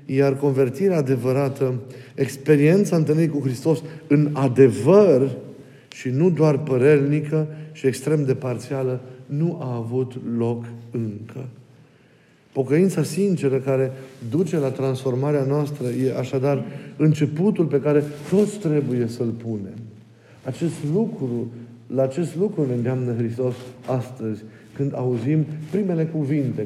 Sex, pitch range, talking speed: male, 120-150 Hz, 115 wpm